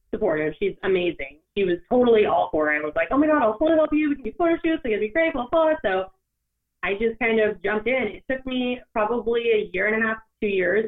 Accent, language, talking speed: American, English, 275 wpm